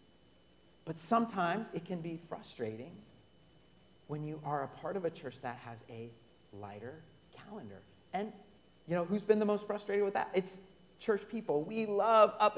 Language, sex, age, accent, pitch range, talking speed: English, male, 40-59, American, 130-200 Hz, 165 wpm